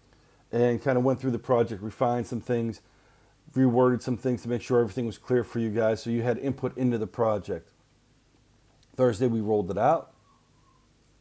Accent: American